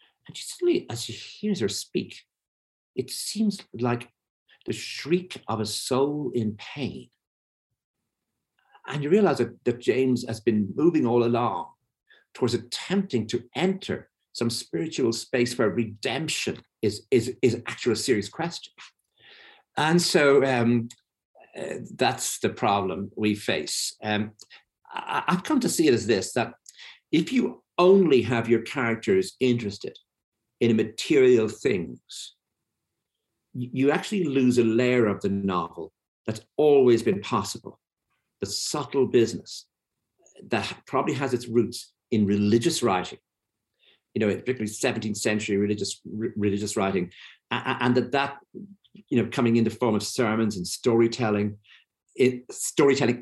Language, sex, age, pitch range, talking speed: English, male, 50-69, 110-150 Hz, 130 wpm